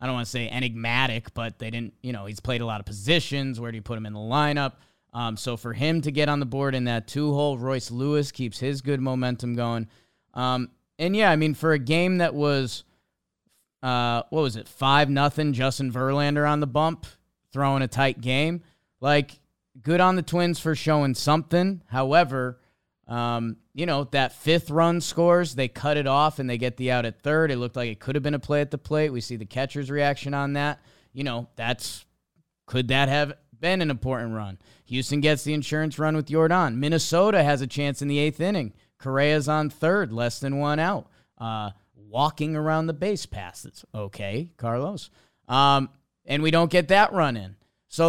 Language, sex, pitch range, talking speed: English, male, 120-155 Hz, 205 wpm